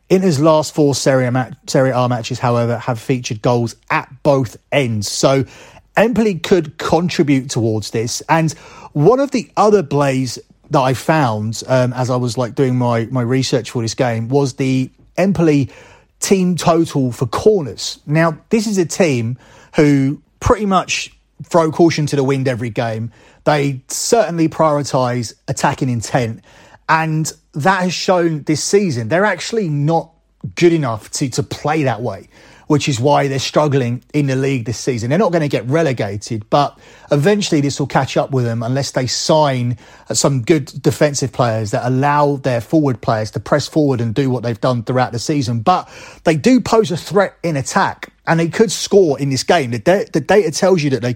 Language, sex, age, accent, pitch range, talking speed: English, male, 30-49, British, 125-165 Hz, 180 wpm